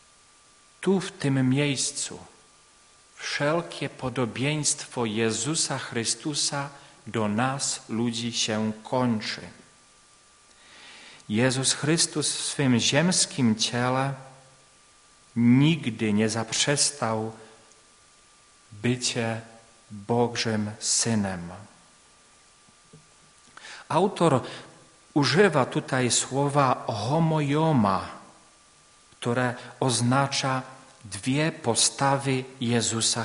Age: 40-59